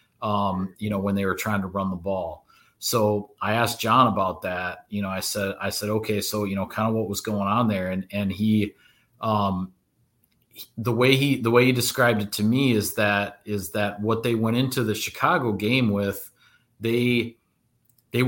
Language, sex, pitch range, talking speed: English, male, 100-115 Hz, 205 wpm